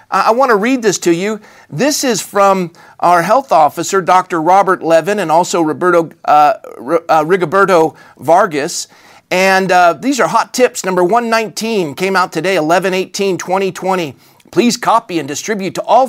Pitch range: 170-215 Hz